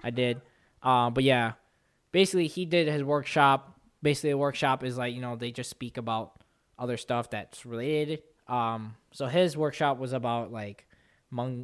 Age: 10-29